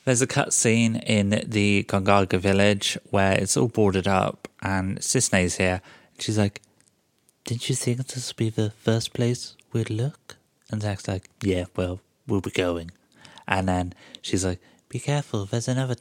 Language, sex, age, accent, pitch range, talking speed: English, male, 30-49, British, 95-115 Hz, 165 wpm